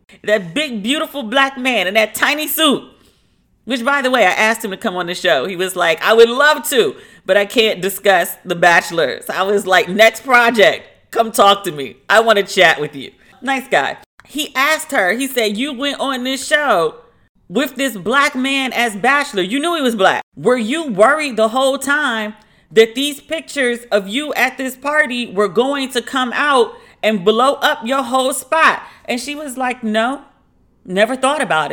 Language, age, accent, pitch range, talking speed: English, 40-59, American, 210-270 Hz, 200 wpm